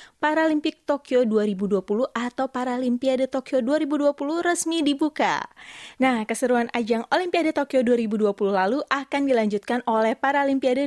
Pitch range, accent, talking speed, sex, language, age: 195-260 Hz, native, 110 wpm, female, Indonesian, 20-39